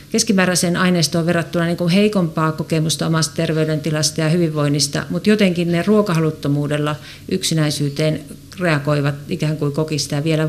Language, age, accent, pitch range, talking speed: Finnish, 50-69, native, 155-190 Hz, 115 wpm